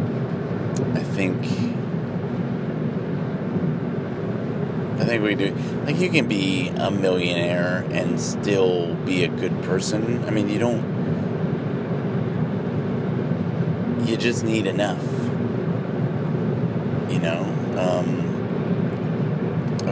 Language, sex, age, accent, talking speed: English, male, 30-49, American, 90 wpm